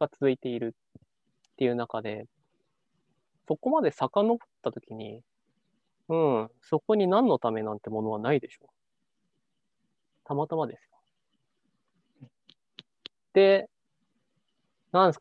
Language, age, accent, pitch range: Japanese, 20-39, native, 115-185 Hz